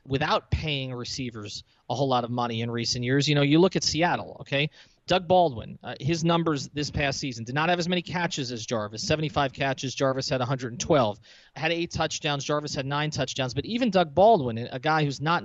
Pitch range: 130-160 Hz